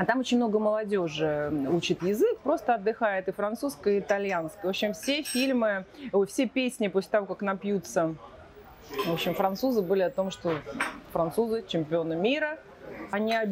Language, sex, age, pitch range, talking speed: Russian, female, 30-49, 180-245 Hz, 150 wpm